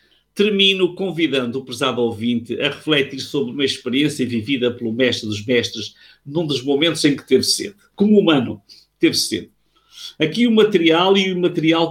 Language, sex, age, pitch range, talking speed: Portuguese, male, 50-69, 125-165 Hz, 160 wpm